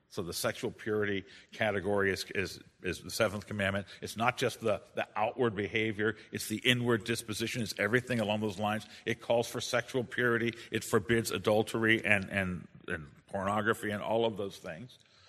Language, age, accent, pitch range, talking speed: English, 50-69, American, 105-155 Hz, 175 wpm